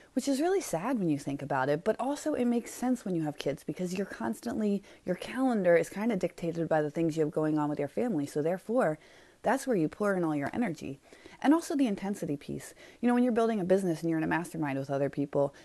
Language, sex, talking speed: English, female, 255 wpm